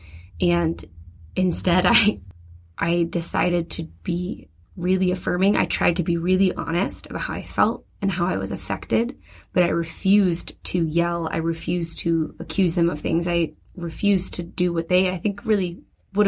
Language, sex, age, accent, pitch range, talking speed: English, female, 20-39, American, 165-185 Hz, 170 wpm